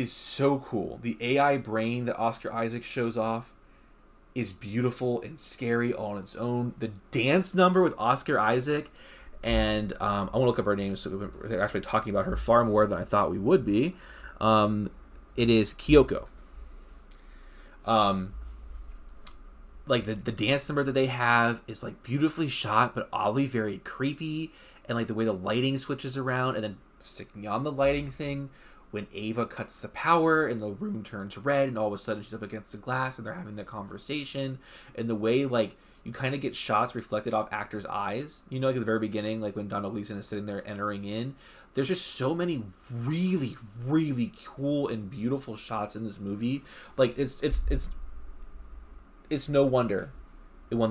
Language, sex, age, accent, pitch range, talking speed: English, male, 20-39, American, 105-130 Hz, 190 wpm